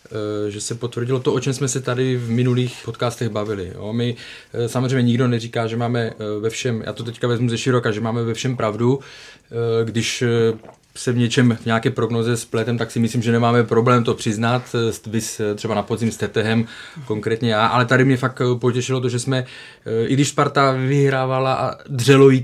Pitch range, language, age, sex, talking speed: 115-130 Hz, Czech, 20-39, male, 185 wpm